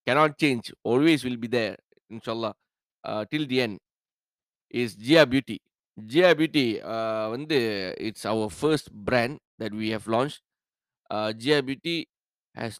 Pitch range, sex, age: 110-140 Hz, male, 20-39